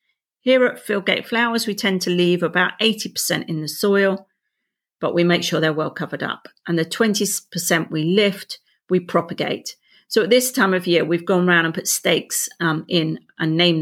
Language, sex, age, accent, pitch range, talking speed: English, female, 40-59, British, 160-195 Hz, 190 wpm